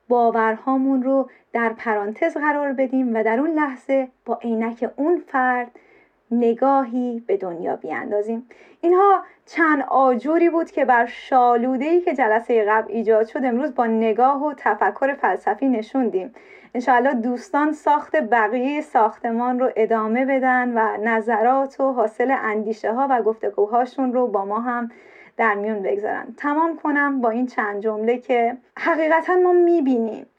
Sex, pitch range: female, 230-275 Hz